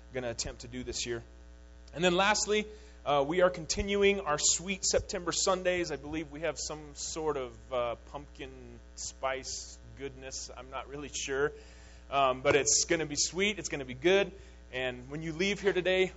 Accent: American